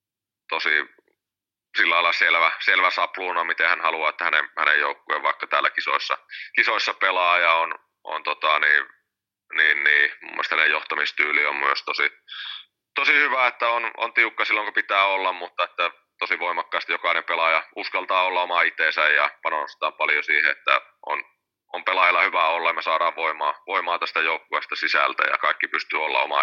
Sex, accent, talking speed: male, native, 160 wpm